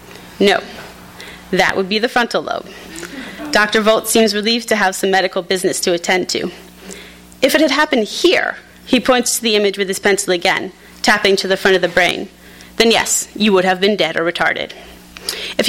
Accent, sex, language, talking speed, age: American, female, English, 190 wpm, 30-49